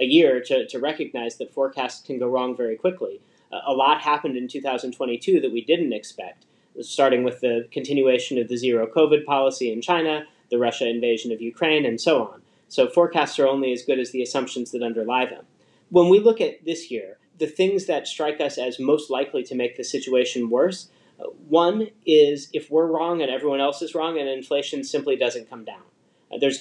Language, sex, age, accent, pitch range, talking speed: English, male, 30-49, American, 125-170 Hz, 205 wpm